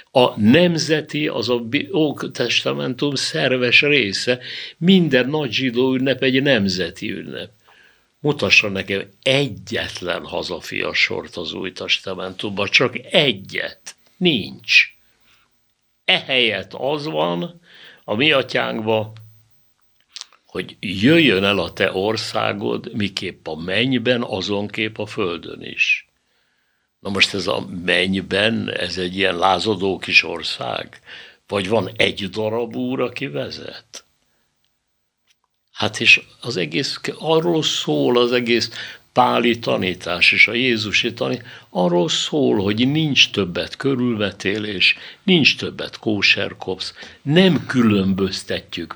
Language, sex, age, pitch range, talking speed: Hungarian, male, 60-79, 100-130 Hz, 110 wpm